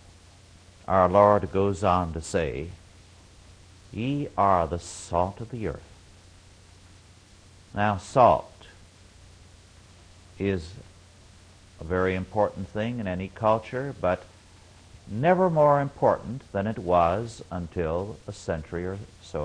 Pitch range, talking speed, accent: 90-105 Hz, 110 wpm, American